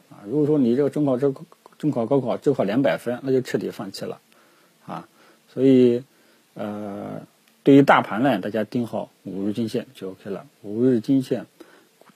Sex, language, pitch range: male, Chinese, 105-130 Hz